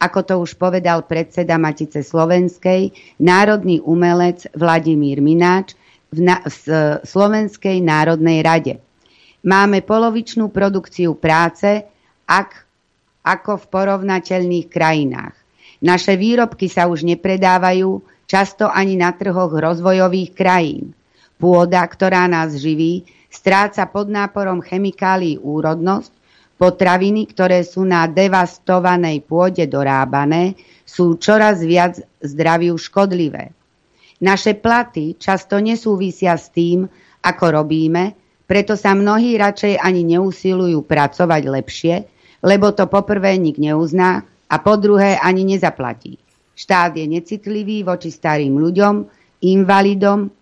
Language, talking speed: Slovak, 105 wpm